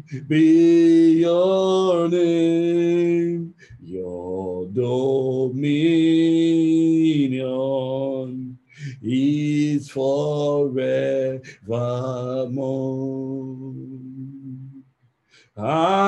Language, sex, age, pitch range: English, male, 50-69, 135-175 Hz